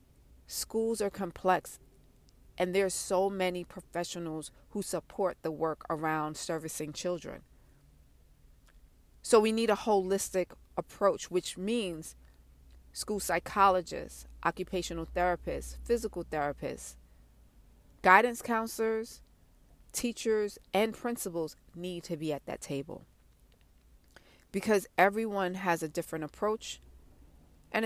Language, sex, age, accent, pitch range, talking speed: English, female, 40-59, American, 150-195 Hz, 105 wpm